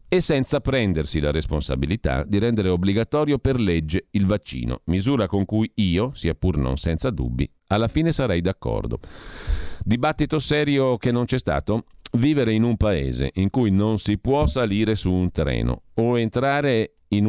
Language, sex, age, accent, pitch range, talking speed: Italian, male, 40-59, native, 85-115 Hz, 165 wpm